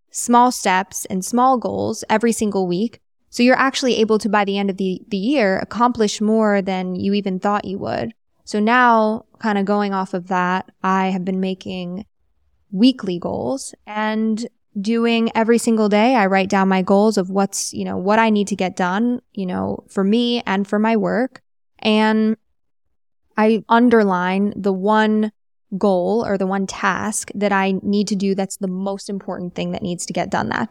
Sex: female